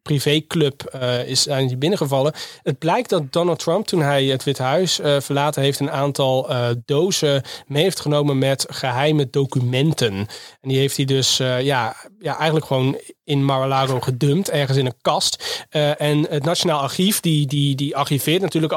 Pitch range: 135-155 Hz